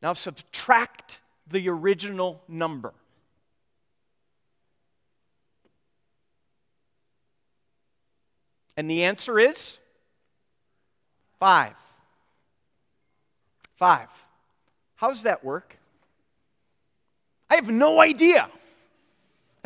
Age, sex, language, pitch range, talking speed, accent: 40-59, male, English, 200-260 Hz, 60 wpm, American